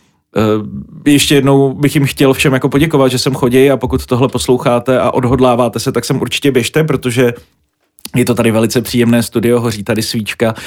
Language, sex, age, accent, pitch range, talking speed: Czech, male, 30-49, native, 120-135 Hz, 175 wpm